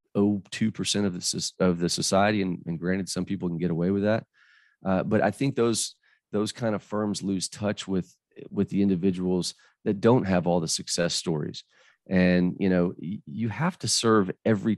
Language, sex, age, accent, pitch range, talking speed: English, male, 30-49, American, 85-100 Hz, 195 wpm